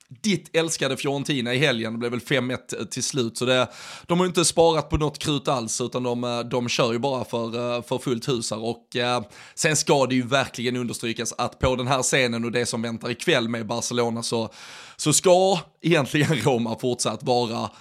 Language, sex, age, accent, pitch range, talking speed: Swedish, male, 20-39, native, 120-135 Hz, 190 wpm